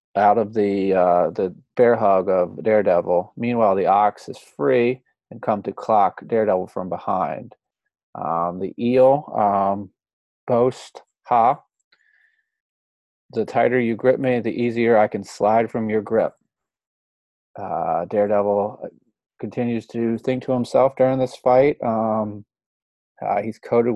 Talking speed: 135 wpm